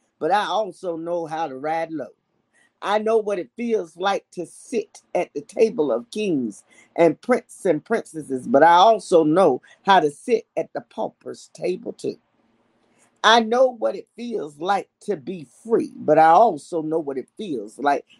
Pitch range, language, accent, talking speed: 160-230 Hz, English, American, 180 wpm